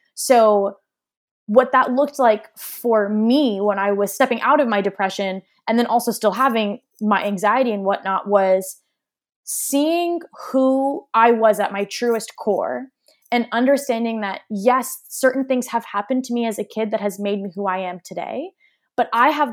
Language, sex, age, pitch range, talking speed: English, female, 20-39, 205-250 Hz, 175 wpm